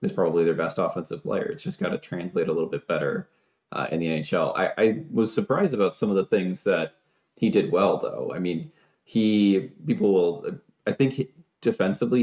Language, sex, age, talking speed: English, male, 20-39, 205 wpm